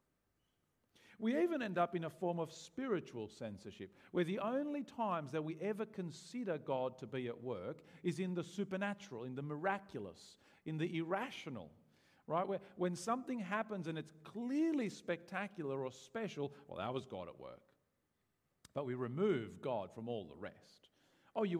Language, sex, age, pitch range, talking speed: English, male, 50-69, 140-215 Hz, 165 wpm